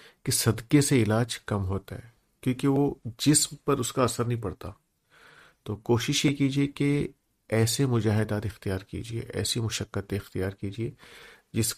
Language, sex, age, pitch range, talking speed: Urdu, male, 50-69, 100-125 Hz, 150 wpm